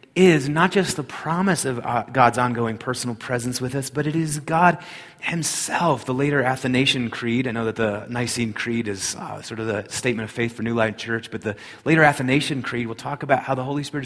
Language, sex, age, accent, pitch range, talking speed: English, male, 30-49, American, 110-140 Hz, 220 wpm